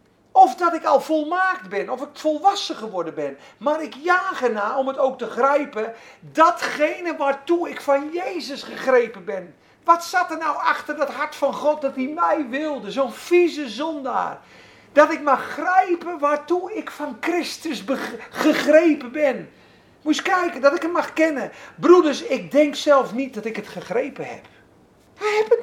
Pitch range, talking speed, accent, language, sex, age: 240-325 Hz, 170 wpm, Dutch, Dutch, male, 40-59